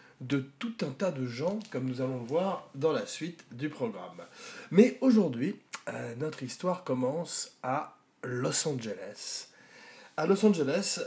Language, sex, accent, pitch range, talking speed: French, male, French, 125-160 Hz, 150 wpm